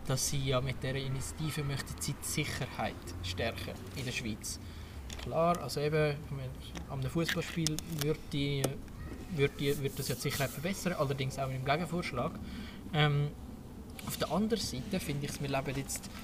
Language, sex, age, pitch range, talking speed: German, male, 20-39, 130-160 Hz, 175 wpm